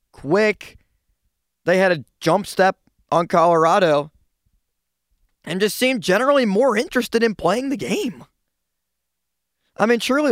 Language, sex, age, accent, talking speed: English, male, 20-39, American, 120 wpm